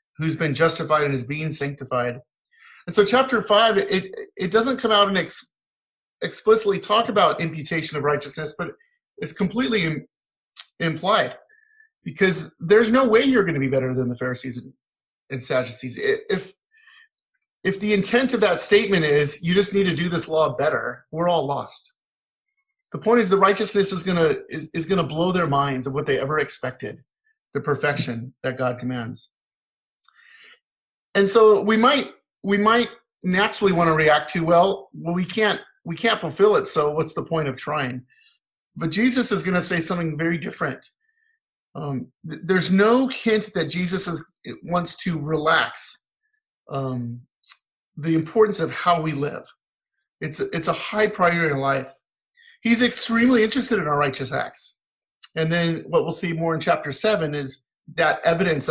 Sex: male